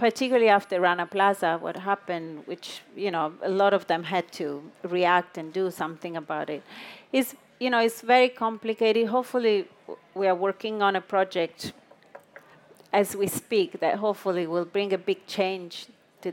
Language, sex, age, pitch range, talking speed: English, female, 40-59, 180-225 Hz, 165 wpm